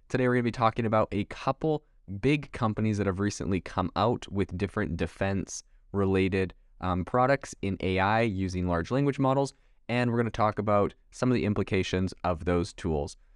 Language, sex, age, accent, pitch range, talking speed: English, male, 20-39, American, 95-115 Hz, 185 wpm